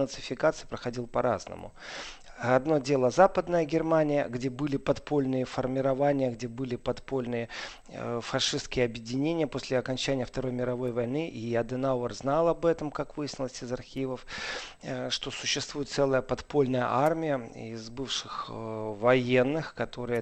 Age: 40-59